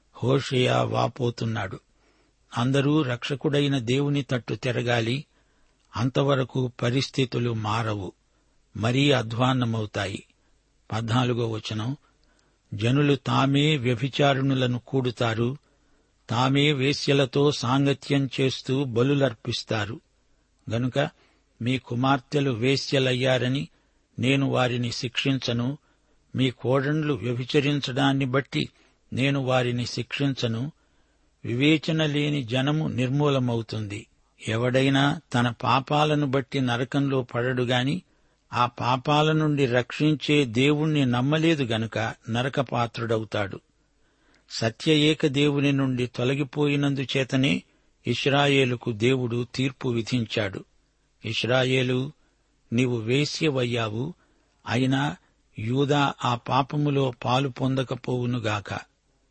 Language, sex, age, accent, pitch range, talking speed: Telugu, male, 60-79, native, 120-140 Hz, 75 wpm